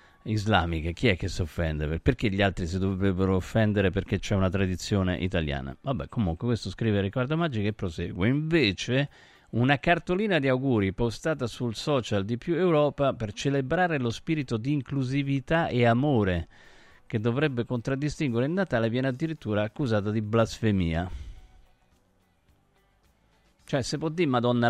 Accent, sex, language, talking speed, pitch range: native, male, Italian, 145 wpm, 100-150 Hz